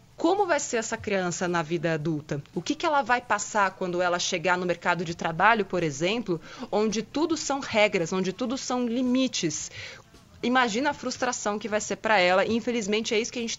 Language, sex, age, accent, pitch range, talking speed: Portuguese, female, 20-39, Brazilian, 185-240 Hz, 200 wpm